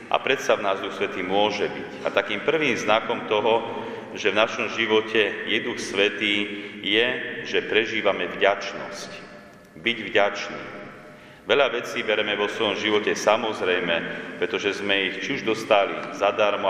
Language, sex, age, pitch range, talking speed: Slovak, male, 40-59, 95-110 Hz, 145 wpm